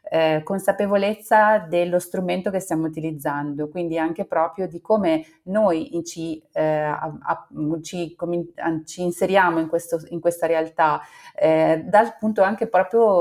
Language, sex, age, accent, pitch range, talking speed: Italian, female, 30-49, native, 160-185 Hz, 155 wpm